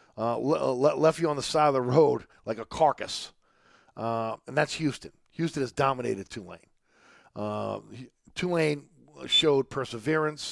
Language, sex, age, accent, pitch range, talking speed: English, male, 40-59, American, 135-175 Hz, 135 wpm